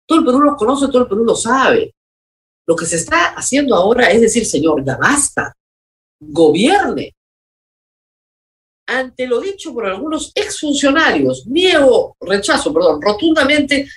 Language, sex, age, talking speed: Spanish, female, 50-69, 140 wpm